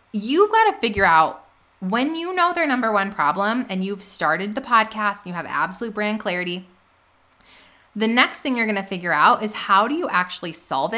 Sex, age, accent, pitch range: female, 20-39, American, 190-245 Hz